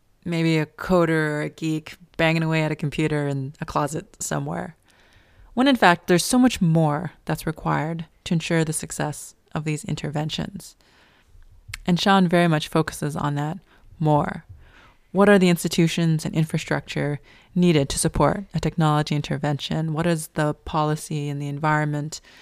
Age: 20-39